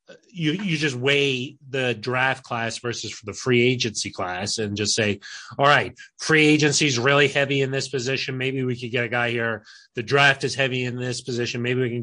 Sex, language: male, English